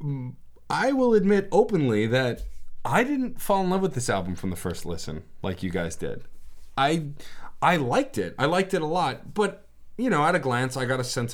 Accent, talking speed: American, 210 wpm